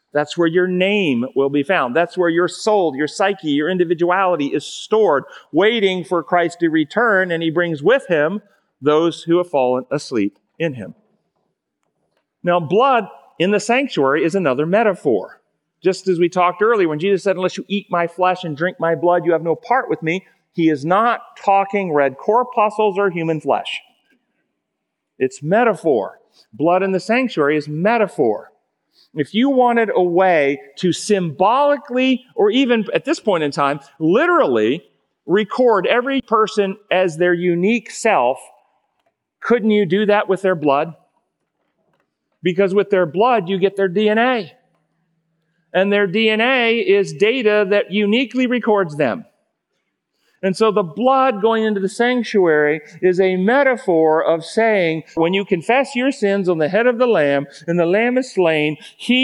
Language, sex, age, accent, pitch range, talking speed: English, male, 40-59, American, 165-215 Hz, 160 wpm